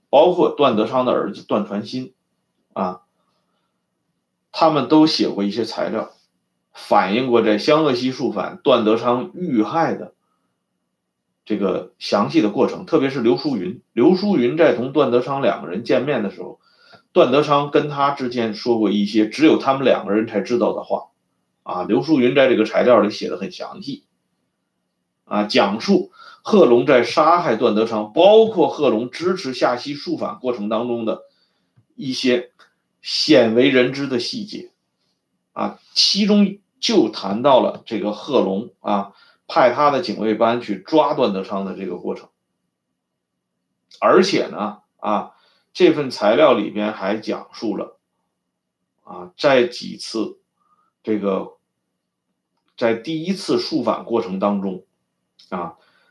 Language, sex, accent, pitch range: Swedish, male, Chinese, 105-150 Hz